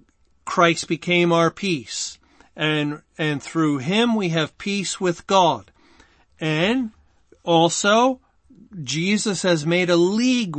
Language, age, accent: English, 50-69, American